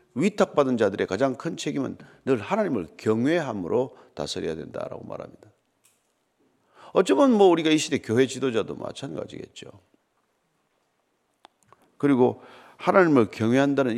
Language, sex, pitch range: Korean, male, 115-175 Hz